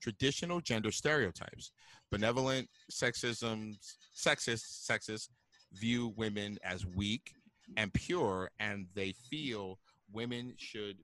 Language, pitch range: English, 95-120 Hz